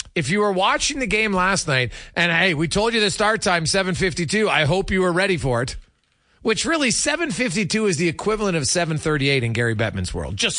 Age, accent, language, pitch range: 40-59, American, English, 130-200 Hz